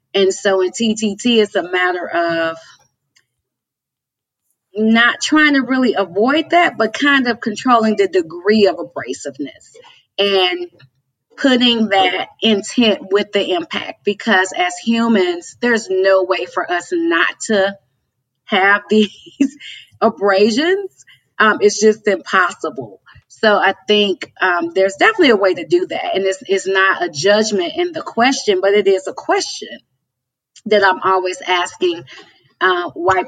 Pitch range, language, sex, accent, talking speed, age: 180-235 Hz, English, female, American, 140 wpm, 30-49